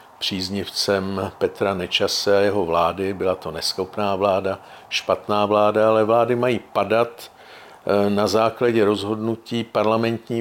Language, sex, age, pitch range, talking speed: Czech, male, 50-69, 100-115 Hz, 115 wpm